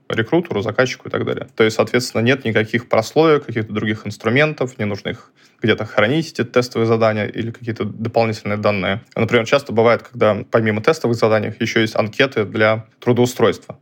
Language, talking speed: Russian, 165 wpm